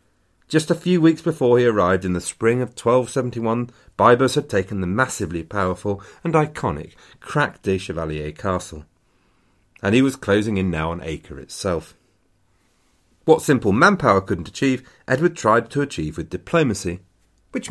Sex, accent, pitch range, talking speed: male, British, 90-130 Hz, 155 wpm